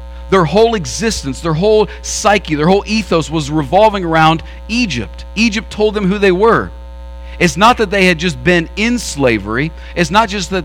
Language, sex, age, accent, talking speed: English, male, 40-59, American, 180 wpm